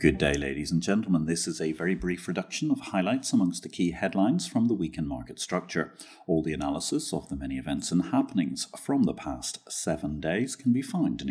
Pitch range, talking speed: 85-135 Hz, 210 wpm